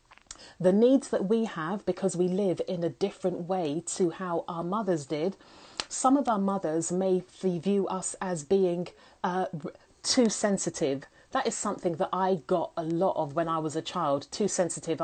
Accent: British